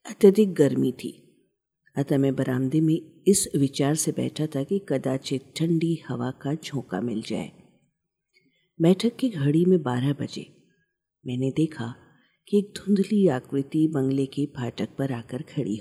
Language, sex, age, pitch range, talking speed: Hindi, female, 50-69, 135-175 Hz, 145 wpm